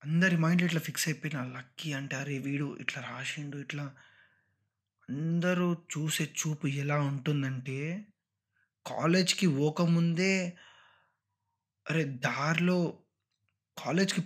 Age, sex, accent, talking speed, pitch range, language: 20-39, male, native, 95 wpm, 130-165 Hz, Telugu